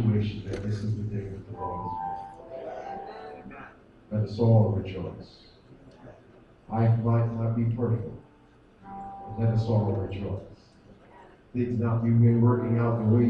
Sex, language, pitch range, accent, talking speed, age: male, English, 110-140 Hz, American, 135 wpm, 50-69